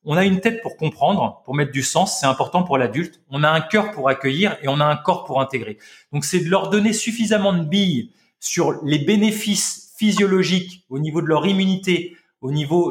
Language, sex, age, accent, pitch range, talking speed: French, male, 30-49, French, 160-215 Hz, 215 wpm